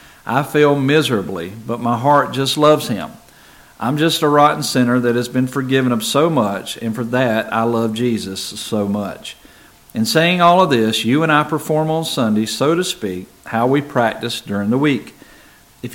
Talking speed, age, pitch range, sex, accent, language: 190 wpm, 50-69, 115-145 Hz, male, American, English